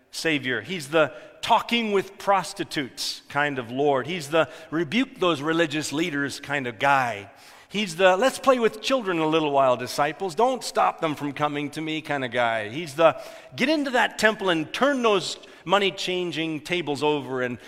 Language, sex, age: English, male, 50-69